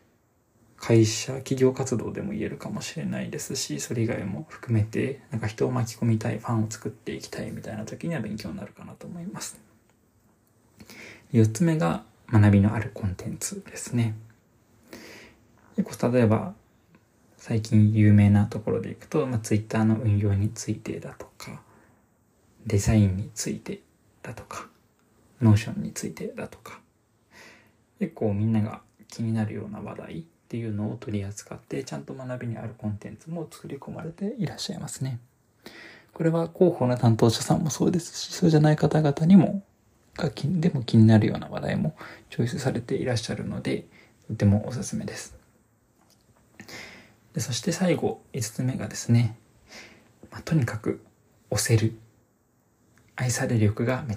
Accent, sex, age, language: native, male, 20-39, Japanese